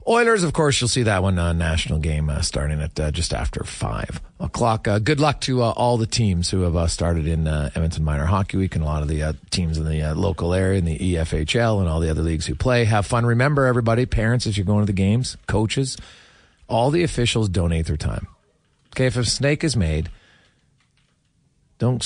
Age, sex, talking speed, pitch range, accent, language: 40-59, male, 225 wpm, 85-130 Hz, American, English